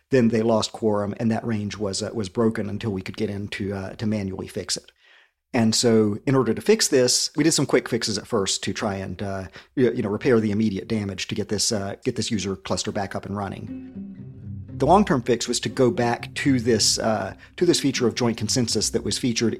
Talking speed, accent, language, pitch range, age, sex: 240 wpm, American, English, 100-120 Hz, 50-69, male